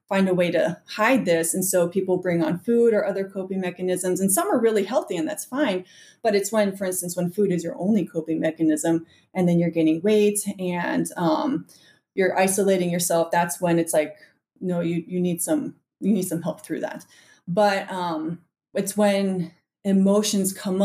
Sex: female